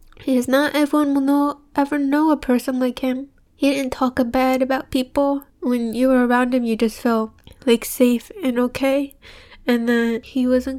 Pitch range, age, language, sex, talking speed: 220-255 Hz, 10-29, English, female, 190 wpm